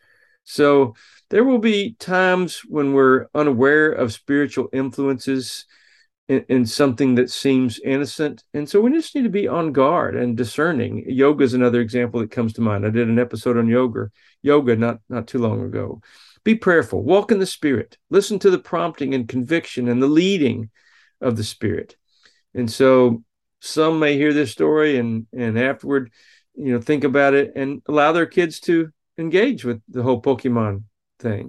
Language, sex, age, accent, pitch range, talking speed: English, male, 40-59, American, 115-145 Hz, 175 wpm